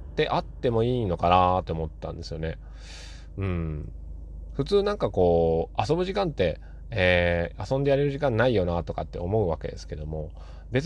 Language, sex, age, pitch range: Japanese, male, 20-39, 80-125 Hz